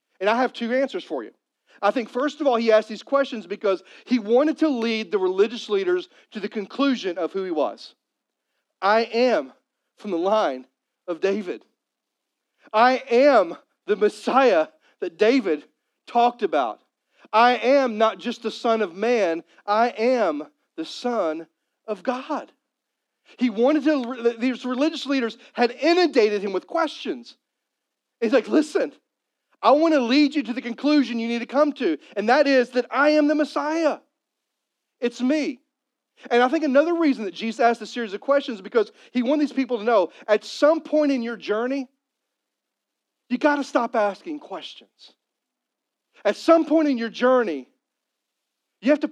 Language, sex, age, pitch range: English, male, 40-59, 230-295 Hz